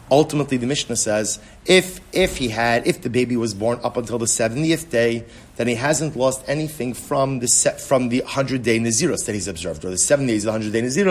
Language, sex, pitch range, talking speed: English, male, 120-160 Hz, 195 wpm